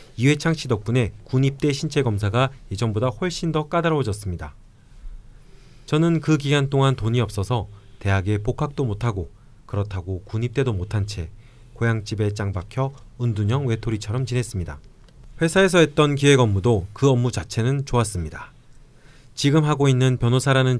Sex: male